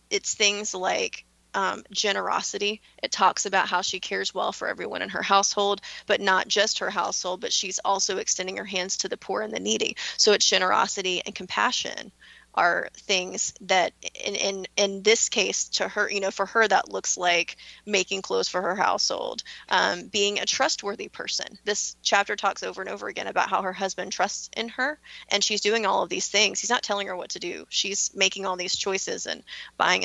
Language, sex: English, female